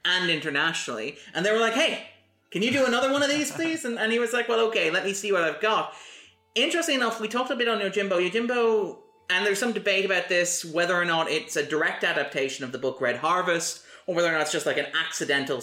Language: English